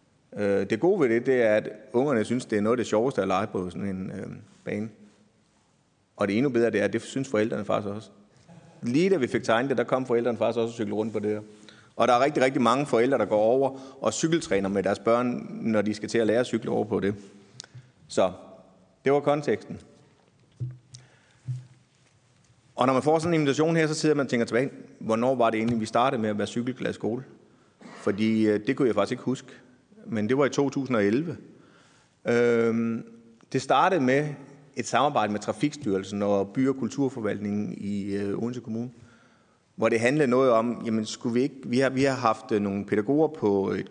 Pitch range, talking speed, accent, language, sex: 105-125 Hz, 205 wpm, native, Danish, male